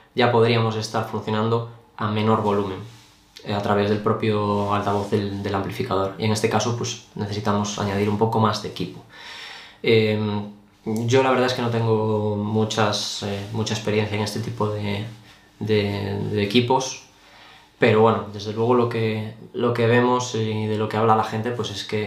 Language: Spanish